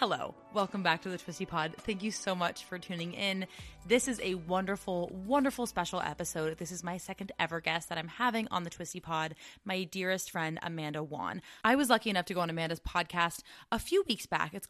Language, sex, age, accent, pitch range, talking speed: English, female, 20-39, American, 165-210 Hz, 215 wpm